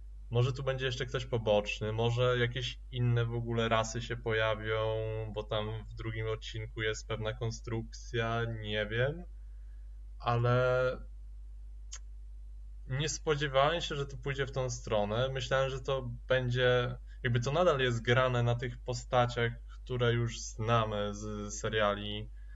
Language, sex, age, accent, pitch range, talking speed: Polish, male, 20-39, native, 105-130 Hz, 135 wpm